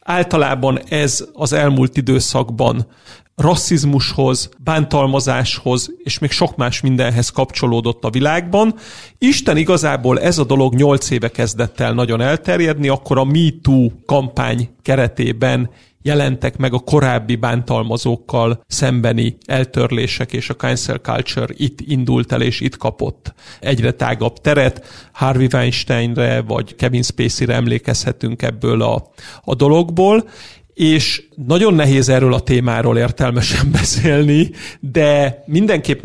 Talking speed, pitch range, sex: 120 wpm, 120-145 Hz, male